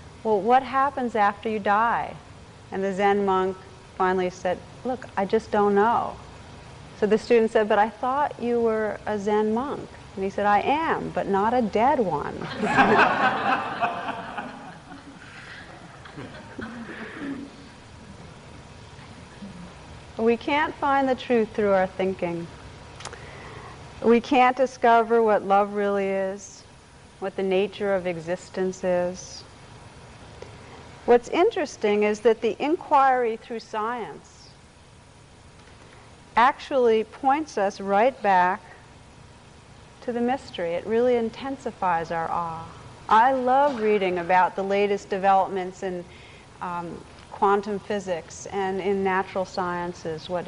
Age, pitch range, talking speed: 40-59, 190-240 Hz, 115 wpm